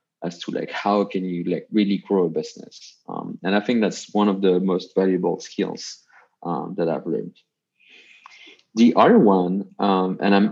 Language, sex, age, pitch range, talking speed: English, male, 30-49, 95-110 Hz, 185 wpm